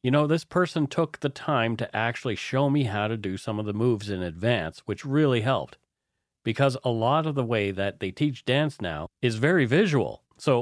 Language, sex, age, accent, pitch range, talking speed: English, male, 40-59, American, 105-140 Hz, 215 wpm